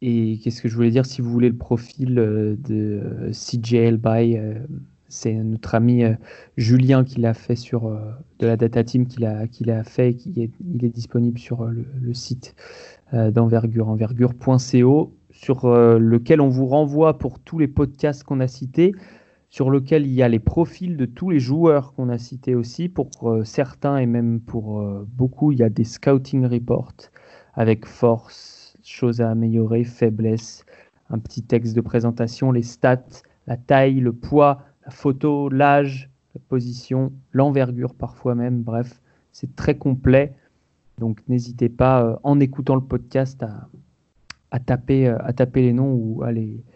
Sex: male